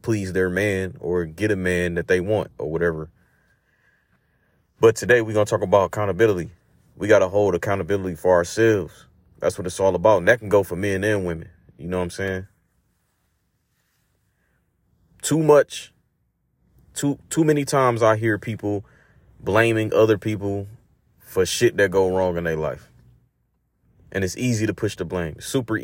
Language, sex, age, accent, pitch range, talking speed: English, male, 30-49, American, 90-110 Hz, 170 wpm